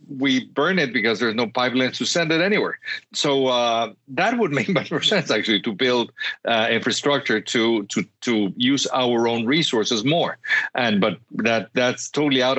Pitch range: 110-140 Hz